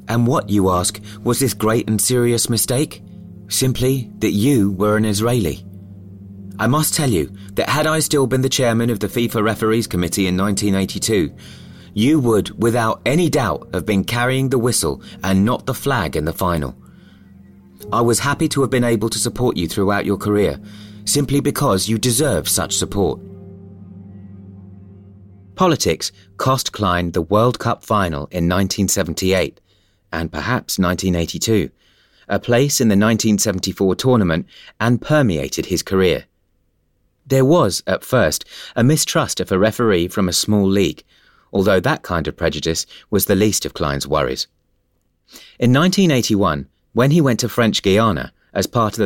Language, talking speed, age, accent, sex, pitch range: English, 155 wpm, 30-49, British, male, 95-120 Hz